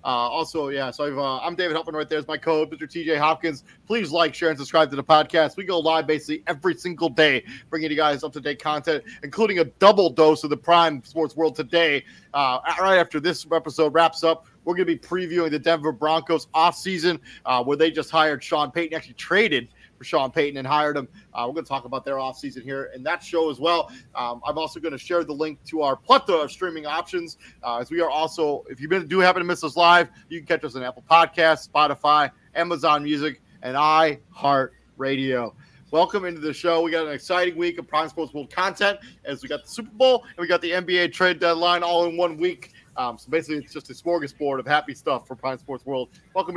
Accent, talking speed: American, 225 wpm